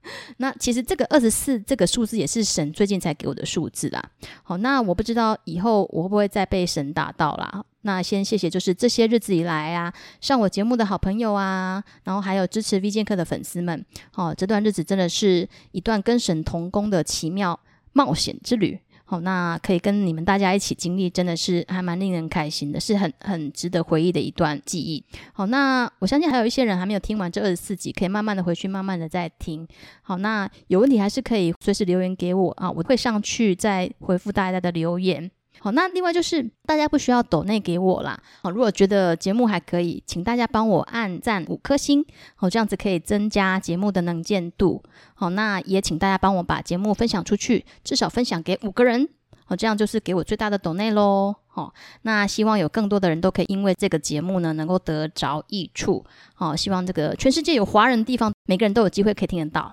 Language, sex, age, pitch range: Chinese, female, 20-39, 175-220 Hz